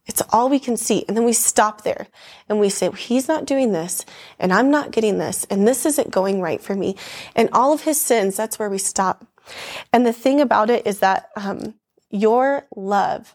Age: 20-39